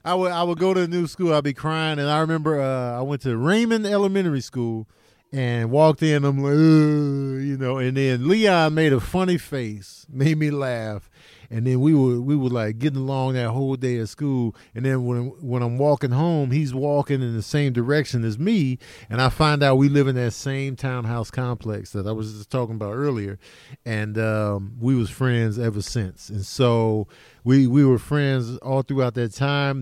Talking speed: 205 wpm